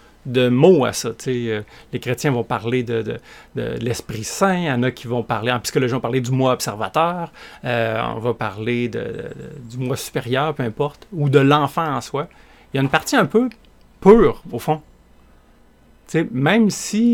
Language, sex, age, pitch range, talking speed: French, male, 30-49, 125-165 Hz, 205 wpm